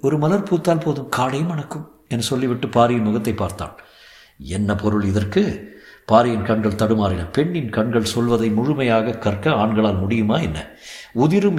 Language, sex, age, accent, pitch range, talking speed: Tamil, male, 50-69, native, 105-135 Hz, 80 wpm